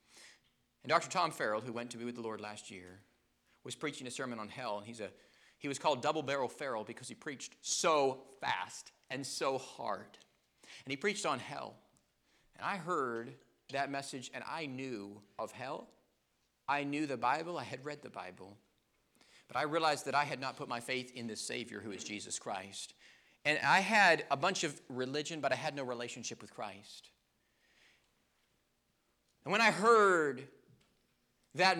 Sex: male